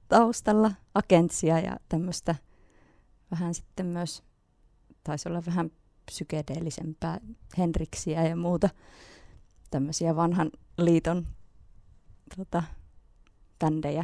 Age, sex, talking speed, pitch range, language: 20-39, female, 75 wpm, 140-170 Hz, Finnish